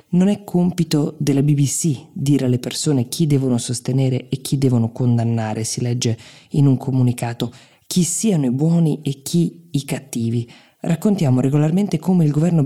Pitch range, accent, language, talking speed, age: 125-155 Hz, native, Italian, 155 wpm, 20-39